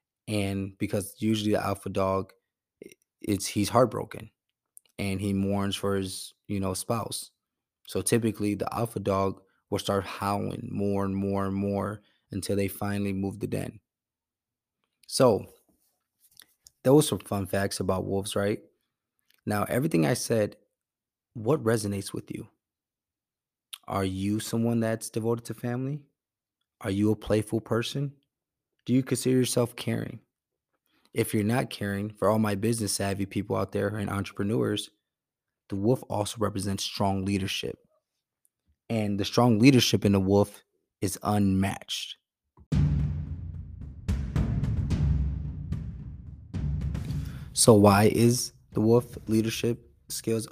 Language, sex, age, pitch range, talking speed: English, male, 20-39, 95-115 Hz, 125 wpm